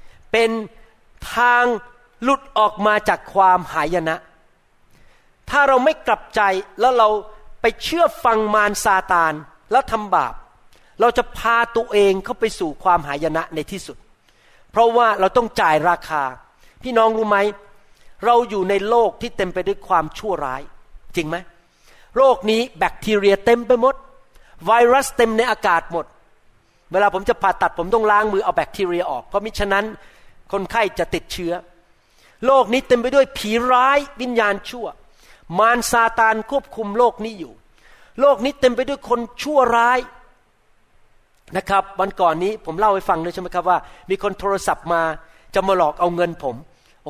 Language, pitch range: Thai, 185-235 Hz